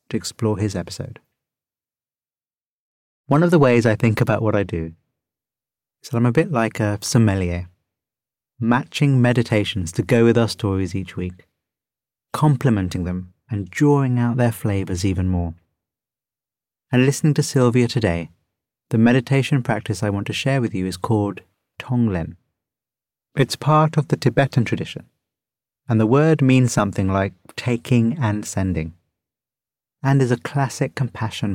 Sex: male